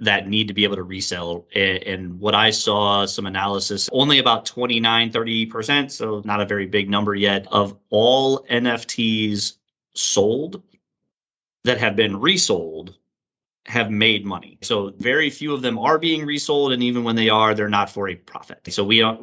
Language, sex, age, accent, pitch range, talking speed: English, male, 30-49, American, 95-115 Hz, 175 wpm